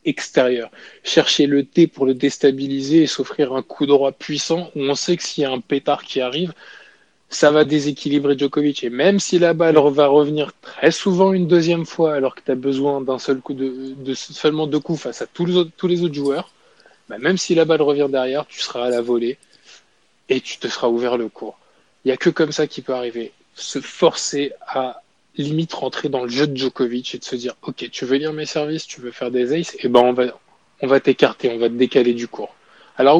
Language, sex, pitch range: French, male, 125-155 Hz